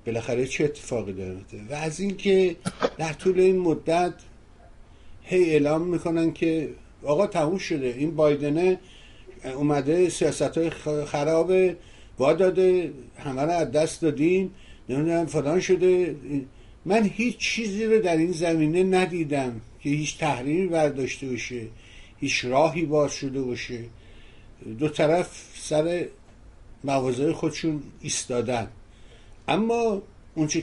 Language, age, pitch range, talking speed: Persian, 60-79, 120-165 Hz, 115 wpm